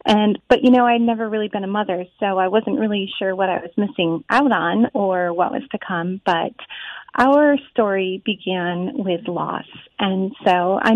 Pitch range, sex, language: 190-240 Hz, female, English